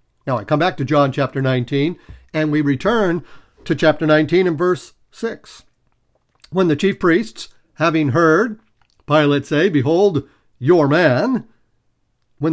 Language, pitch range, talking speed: English, 140-185 Hz, 140 wpm